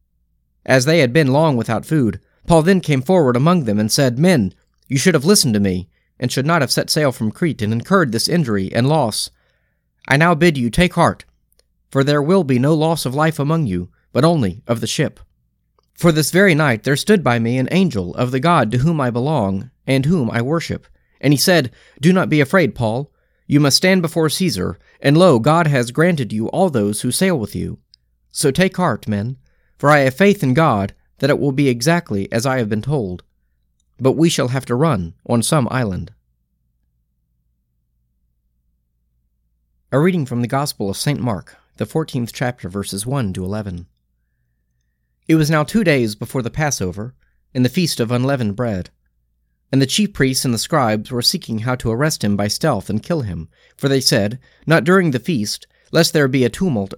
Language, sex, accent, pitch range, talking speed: English, male, American, 95-155 Hz, 200 wpm